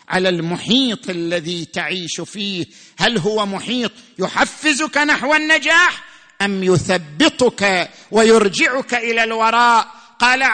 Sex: male